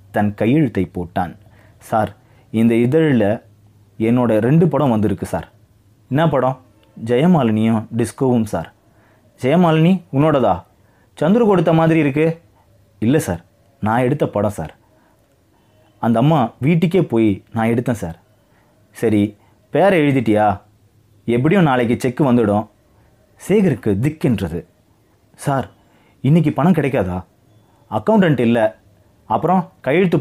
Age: 30-49